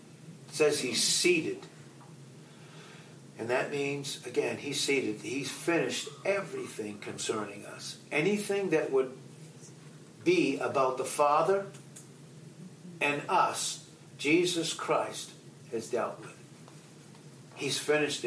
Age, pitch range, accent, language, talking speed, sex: 60-79, 145-175 Hz, American, English, 100 wpm, male